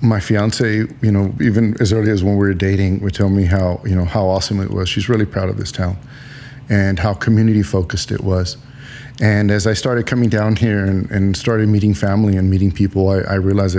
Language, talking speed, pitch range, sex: English, 225 wpm, 95-120 Hz, male